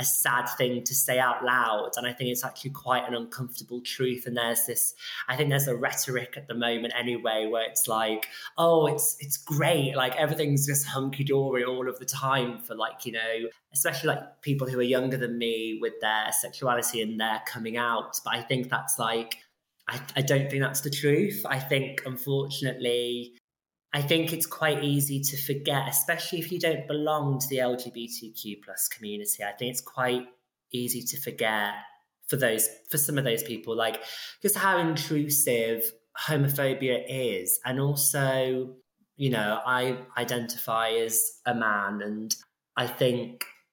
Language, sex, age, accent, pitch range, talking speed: English, male, 20-39, British, 115-135 Hz, 175 wpm